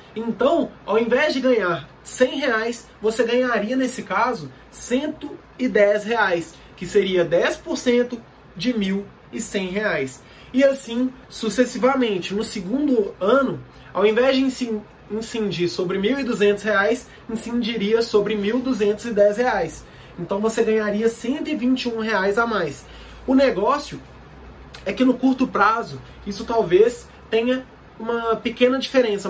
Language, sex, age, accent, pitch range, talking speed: Portuguese, male, 20-39, Brazilian, 205-255 Hz, 115 wpm